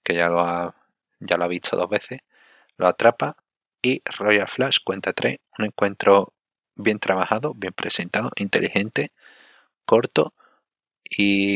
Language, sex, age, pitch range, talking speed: Spanish, male, 30-49, 85-95 Hz, 135 wpm